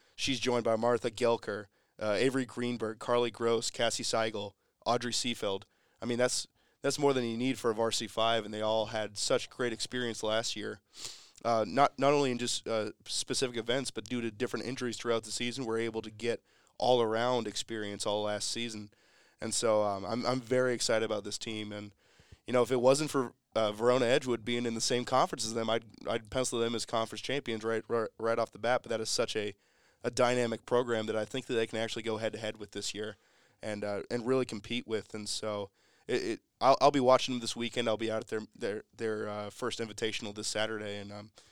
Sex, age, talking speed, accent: male, 20-39, 220 wpm, American